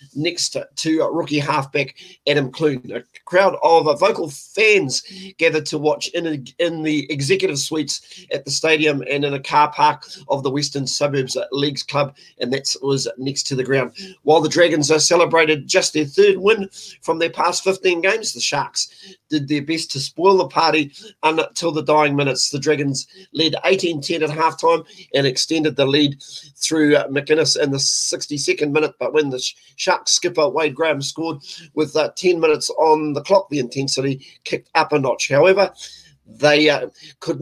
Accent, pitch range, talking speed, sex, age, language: Australian, 140-170 Hz, 180 wpm, male, 40-59, English